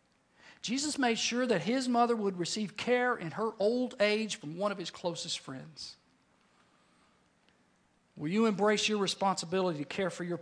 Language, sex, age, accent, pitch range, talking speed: English, male, 50-69, American, 185-250 Hz, 160 wpm